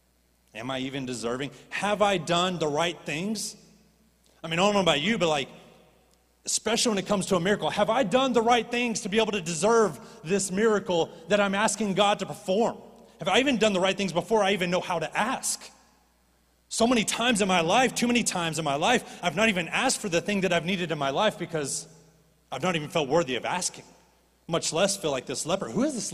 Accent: American